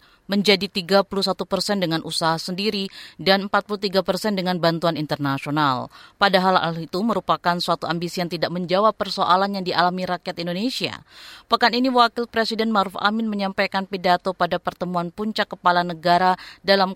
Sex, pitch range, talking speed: female, 180-220 Hz, 140 wpm